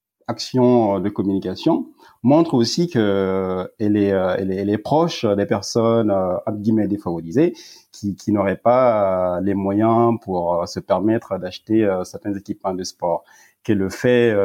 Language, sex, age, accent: French, male, 30-49, French